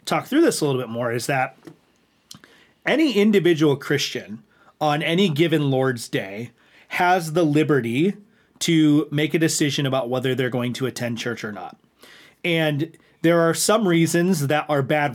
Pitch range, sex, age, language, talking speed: 130-165 Hz, male, 30-49, English, 160 wpm